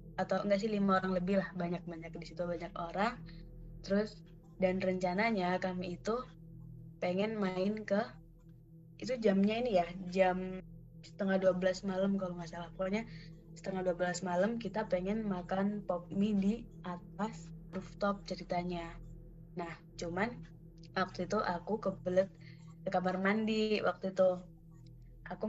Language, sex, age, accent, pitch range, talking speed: Indonesian, female, 20-39, native, 170-195 Hz, 125 wpm